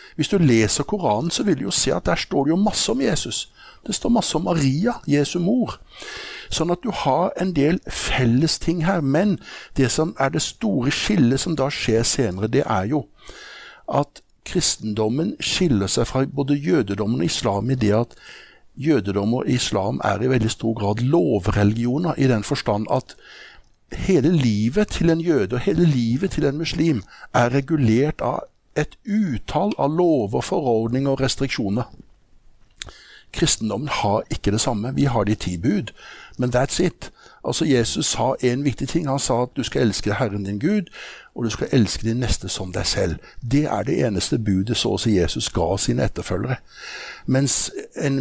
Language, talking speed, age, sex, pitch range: English, 180 wpm, 60-79, male, 110-155 Hz